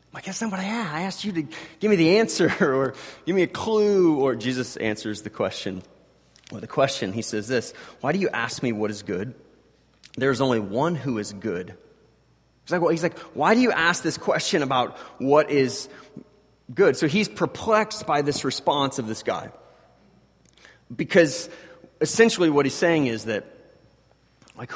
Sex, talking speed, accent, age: male, 190 wpm, American, 30-49